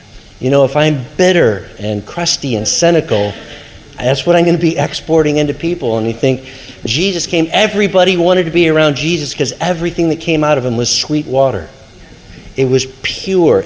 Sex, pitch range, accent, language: male, 120-165 Hz, American, English